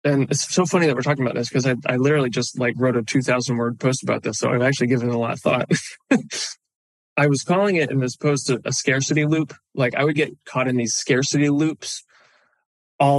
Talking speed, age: 235 wpm, 20-39